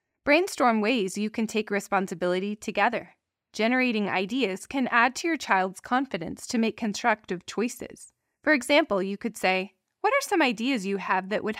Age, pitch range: 20-39, 195-260 Hz